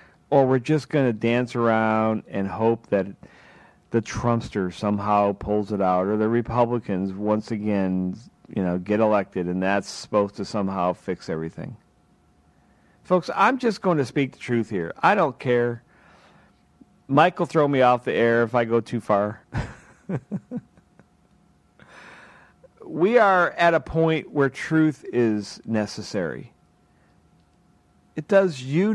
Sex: male